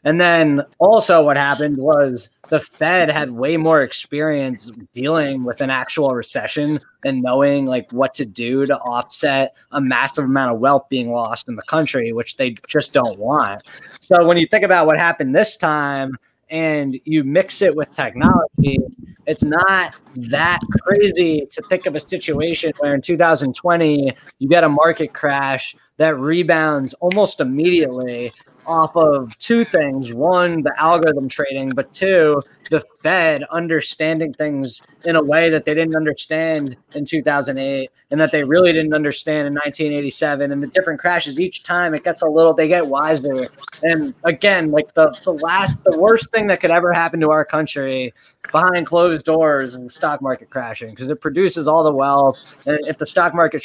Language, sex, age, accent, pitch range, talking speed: English, male, 20-39, American, 140-170 Hz, 170 wpm